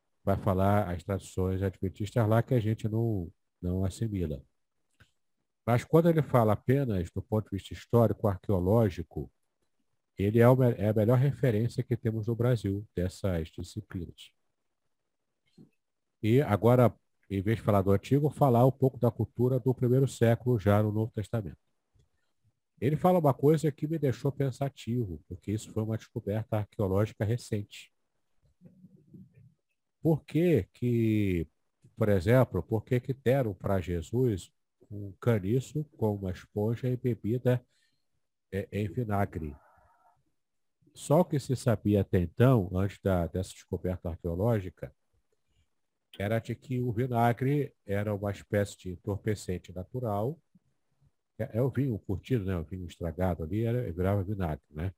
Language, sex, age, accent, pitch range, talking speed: Portuguese, male, 50-69, Brazilian, 95-125 Hz, 135 wpm